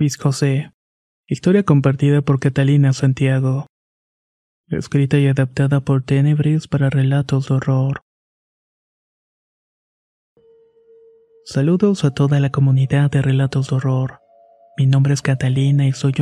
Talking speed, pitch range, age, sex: 115 wpm, 135-145 Hz, 30-49, male